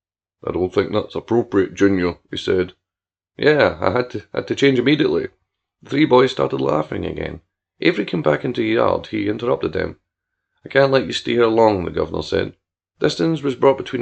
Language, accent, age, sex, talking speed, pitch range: English, British, 40-59, male, 195 wpm, 95-135 Hz